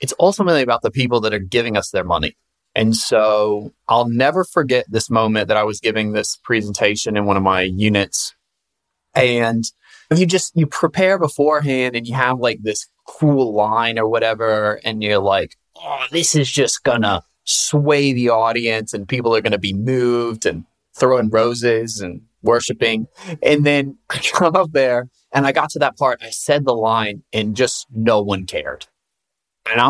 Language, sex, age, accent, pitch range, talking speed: English, male, 30-49, American, 110-160 Hz, 185 wpm